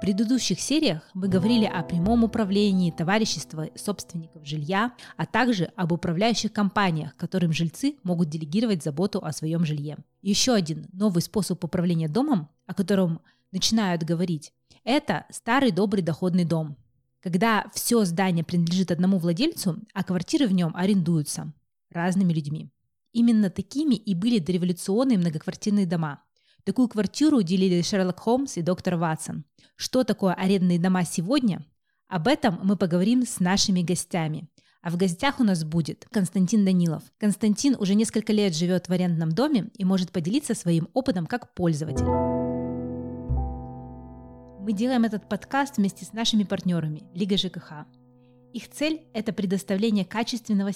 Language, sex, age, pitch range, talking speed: Russian, female, 20-39, 165-215 Hz, 140 wpm